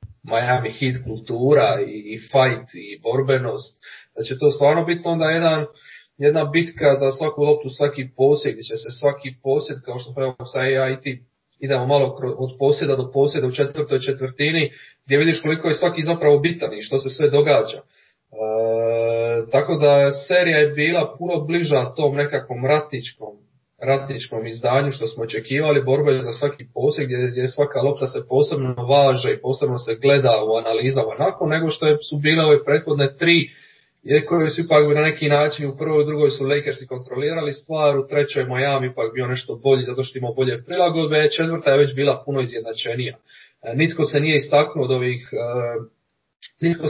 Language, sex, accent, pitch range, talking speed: Croatian, male, Serbian, 130-150 Hz, 165 wpm